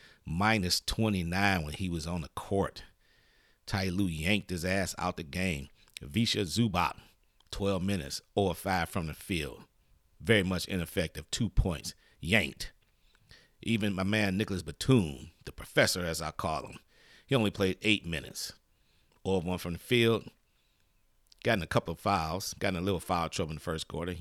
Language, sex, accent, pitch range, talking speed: English, male, American, 85-100 Hz, 160 wpm